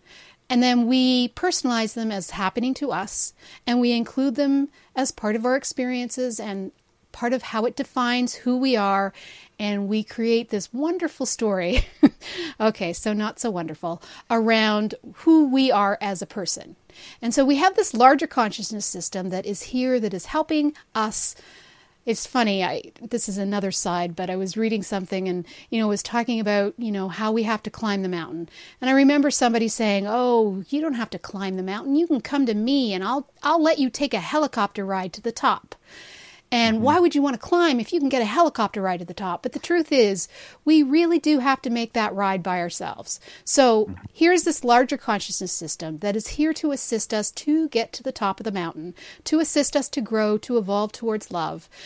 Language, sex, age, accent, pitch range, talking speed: English, female, 40-59, American, 200-265 Hz, 205 wpm